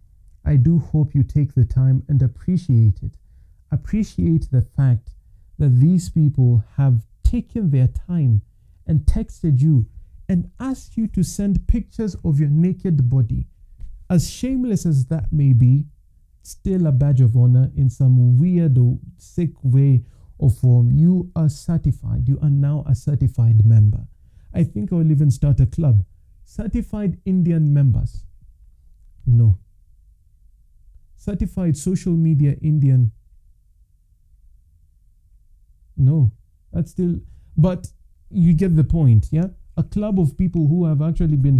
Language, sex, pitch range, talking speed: English, male, 110-160 Hz, 135 wpm